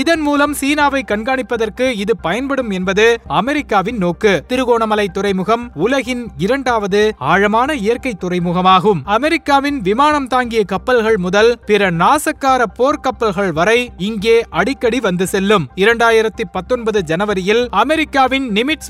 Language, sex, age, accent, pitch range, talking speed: Tamil, male, 20-39, native, 200-255 Hz, 105 wpm